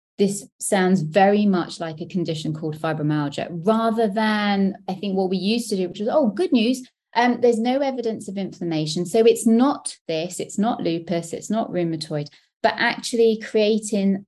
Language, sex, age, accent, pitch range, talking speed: English, female, 20-39, British, 170-215 Hz, 175 wpm